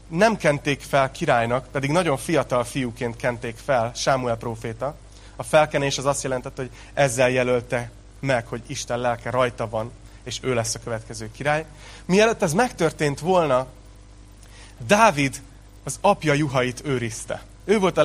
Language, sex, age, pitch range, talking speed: Hungarian, male, 30-49, 115-145 Hz, 145 wpm